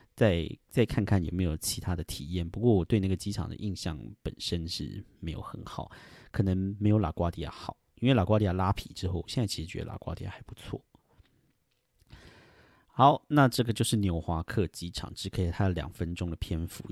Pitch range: 85-110 Hz